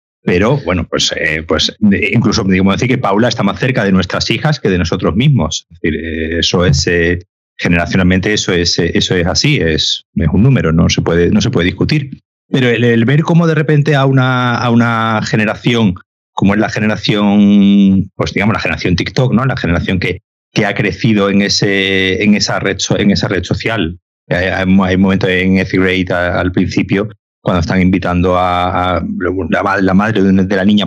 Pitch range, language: 90-110 Hz, Spanish